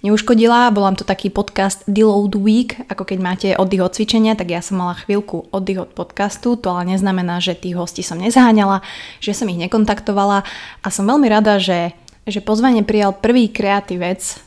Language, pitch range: Slovak, 185-215 Hz